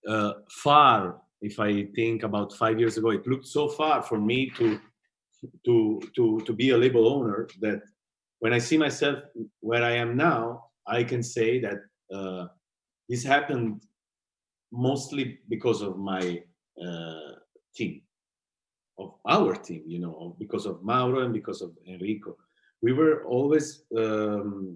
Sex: male